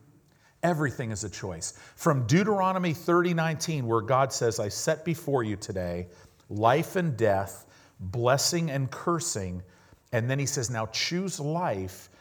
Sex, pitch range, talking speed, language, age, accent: male, 110-150 Hz, 145 wpm, English, 40-59, American